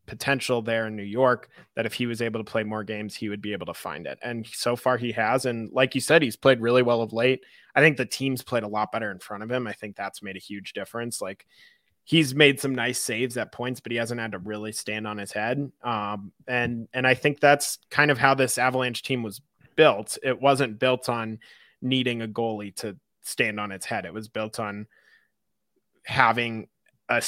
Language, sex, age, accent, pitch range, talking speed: English, male, 20-39, American, 110-130 Hz, 230 wpm